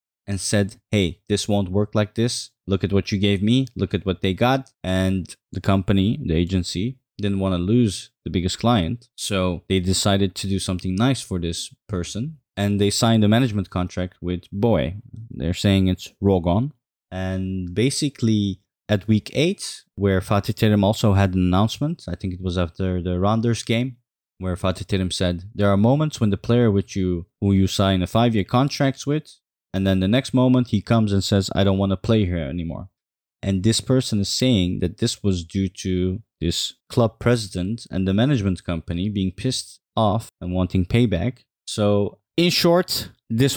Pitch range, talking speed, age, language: 95-115 Hz, 185 wpm, 20-39, English